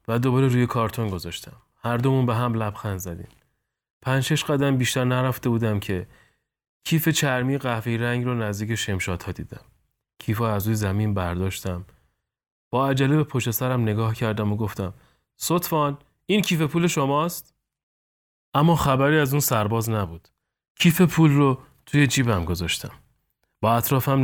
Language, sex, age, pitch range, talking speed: Persian, male, 30-49, 105-140 Hz, 145 wpm